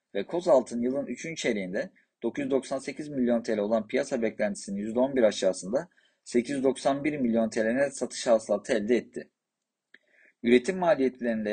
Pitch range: 110-135 Hz